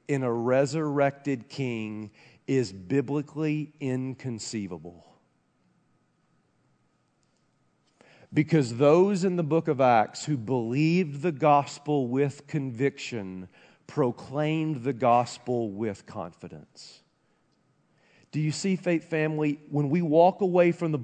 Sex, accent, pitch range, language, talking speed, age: male, American, 115-155 Hz, English, 105 wpm, 40-59